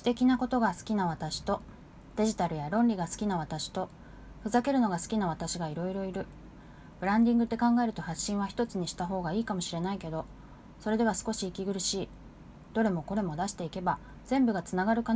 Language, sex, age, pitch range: Japanese, female, 20-39, 175-220 Hz